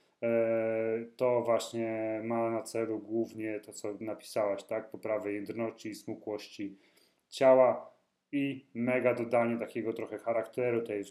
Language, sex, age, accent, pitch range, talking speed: Polish, male, 30-49, native, 115-145 Hz, 120 wpm